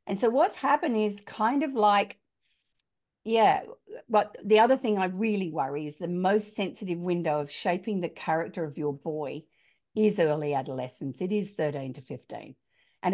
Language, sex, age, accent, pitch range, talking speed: English, female, 50-69, Australian, 160-220 Hz, 170 wpm